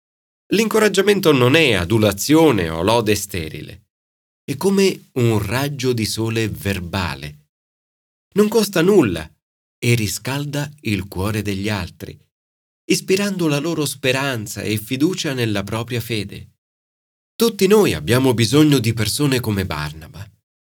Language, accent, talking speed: Italian, native, 115 wpm